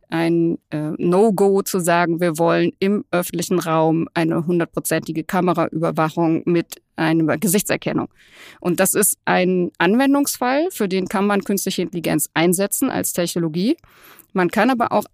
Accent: German